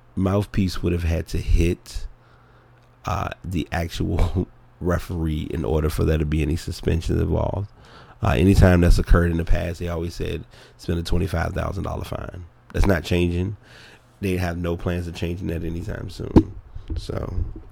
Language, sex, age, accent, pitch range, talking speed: English, male, 30-49, American, 85-105 Hz, 155 wpm